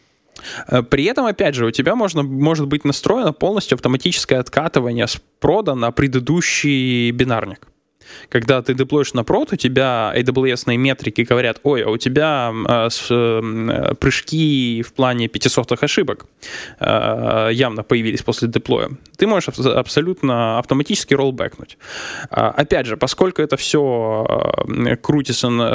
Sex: male